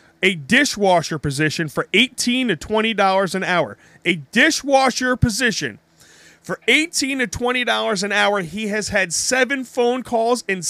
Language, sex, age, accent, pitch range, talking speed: English, male, 40-59, American, 175-240 Hz, 140 wpm